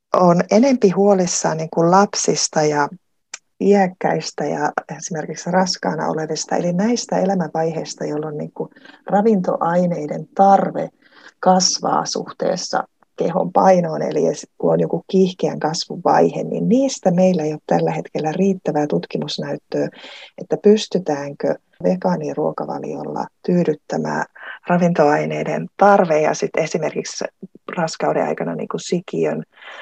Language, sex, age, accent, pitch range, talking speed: Finnish, female, 30-49, native, 160-205 Hz, 100 wpm